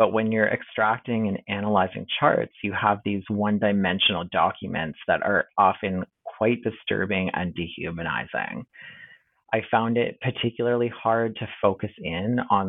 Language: English